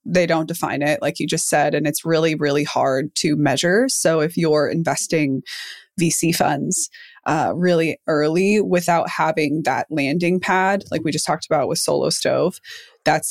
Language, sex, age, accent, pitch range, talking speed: English, female, 20-39, American, 155-205 Hz, 170 wpm